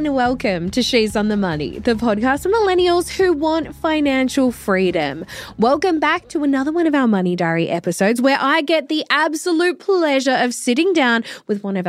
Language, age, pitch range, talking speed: English, 20-39, 200-290 Hz, 185 wpm